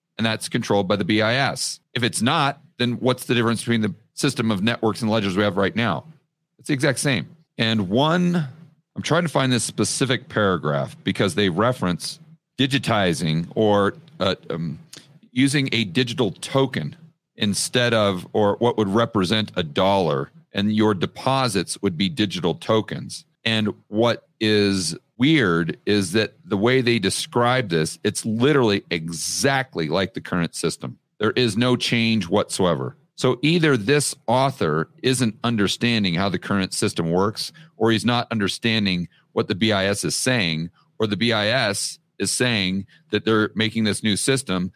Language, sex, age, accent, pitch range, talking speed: English, male, 40-59, American, 100-135 Hz, 155 wpm